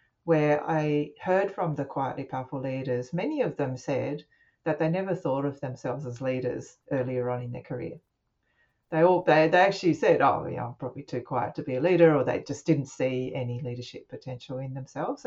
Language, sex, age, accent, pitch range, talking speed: English, female, 40-59, Australian, 130-160 Hz, 200 wpm